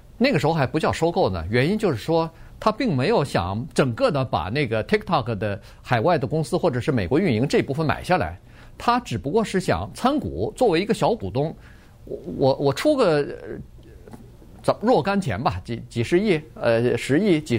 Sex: male